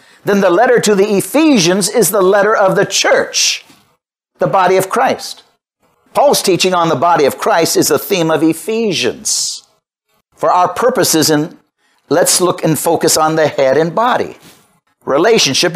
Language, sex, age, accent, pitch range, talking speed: English, male, 60-79, American, 165-215 Hz, 155 wpm